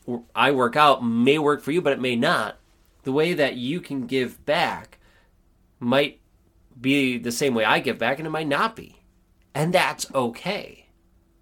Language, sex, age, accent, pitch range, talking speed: English, male, 30-49, American, 90-140 Hz, 180 wpm